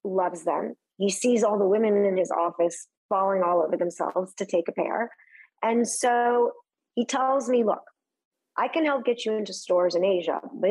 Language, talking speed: English, 190 wpm